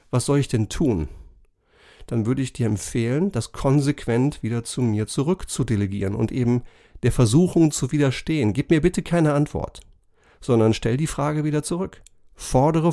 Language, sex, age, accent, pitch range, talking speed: German, male, 40-59, German, 115-145 Hz, 160 wpm